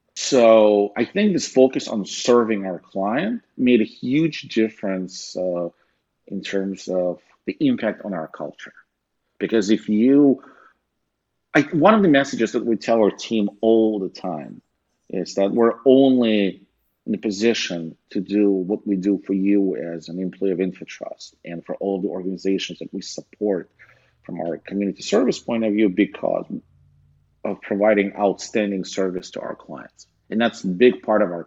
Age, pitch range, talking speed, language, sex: 40-59, 90-110 Hz, 165 wpm, English, male